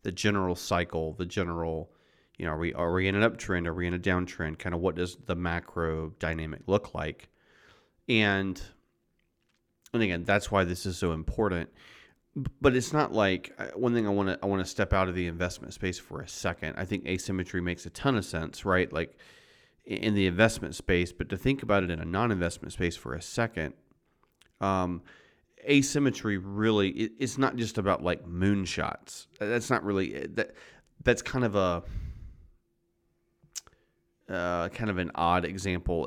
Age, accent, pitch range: 30-49, American, 85-105 Hz